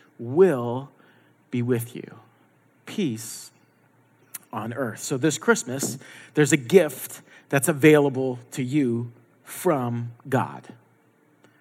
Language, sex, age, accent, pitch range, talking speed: English, male, 40-59, American, 135-190 Hz, 100 wpm